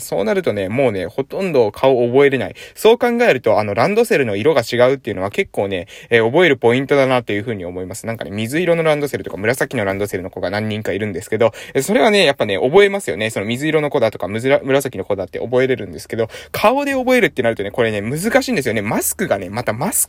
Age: 20-39